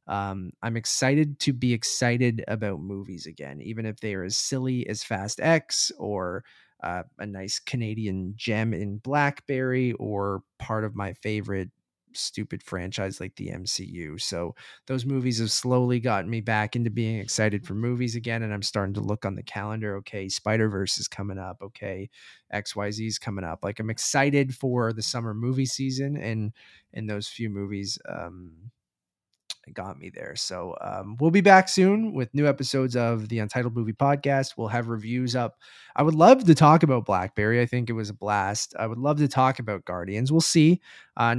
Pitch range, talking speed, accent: 100-125 Hz, 185 wpm, American